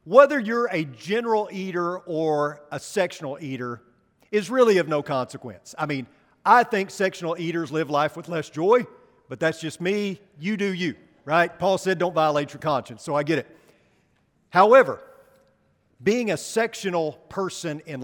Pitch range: 145-195 Hz